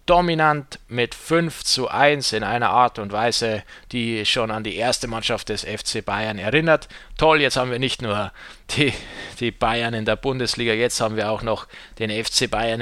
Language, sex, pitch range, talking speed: German, male, 100-140 Hz, 185 wpm